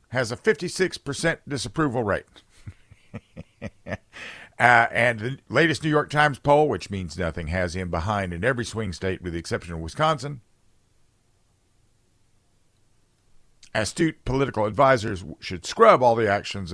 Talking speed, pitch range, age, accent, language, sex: 130 wpm, 90-120 Hz, 50-69, American, English, male